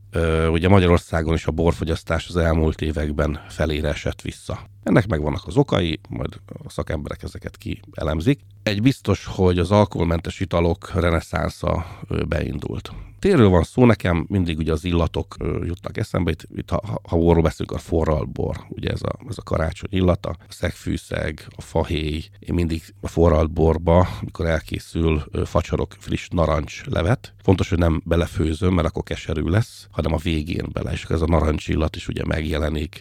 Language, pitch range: Hungarian, 80-100 Hz